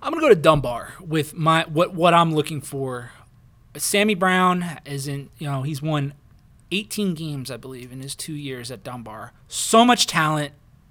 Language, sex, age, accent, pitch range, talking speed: English, male, 20-39, American, 135-160 Hz, 180 wpm